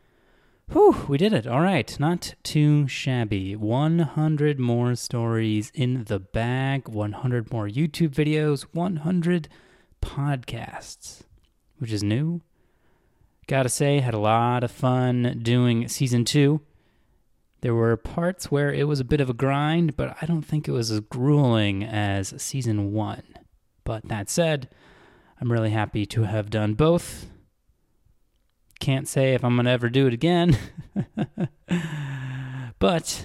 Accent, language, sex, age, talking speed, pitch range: American, English, male, 20-39, 140 wpm, 105-140 Hz